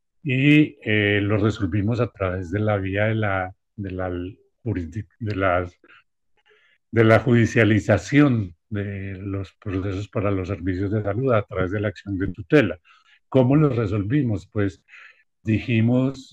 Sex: male